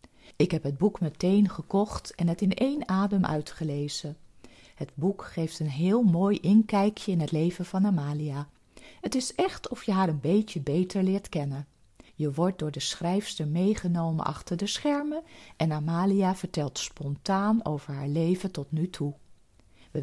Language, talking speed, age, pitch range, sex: Dutch, 165 wpm, 40-59, 150-200 Hz, female